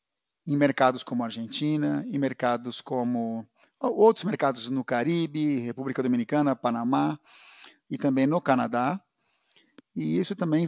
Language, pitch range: Portuguese, 125-155 Hz